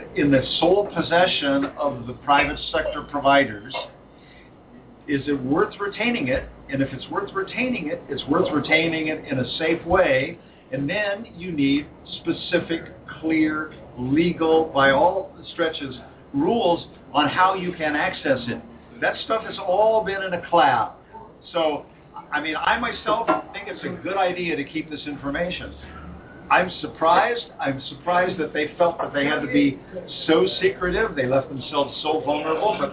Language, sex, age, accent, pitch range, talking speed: English, male, 50-69, American, 140-180 Hz, 160 wpm